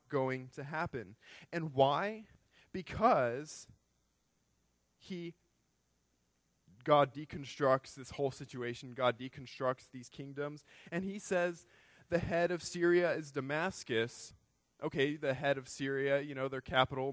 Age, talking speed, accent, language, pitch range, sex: 20-39, 120 wpm, American, English, 130-160 Hz, male